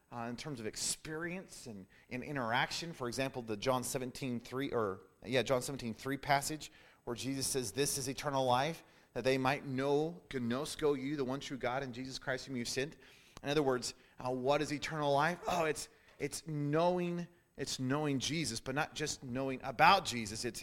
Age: 30-49